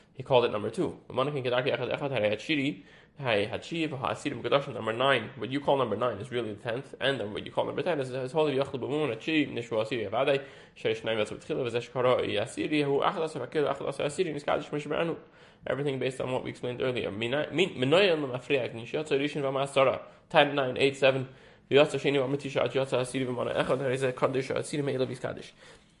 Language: English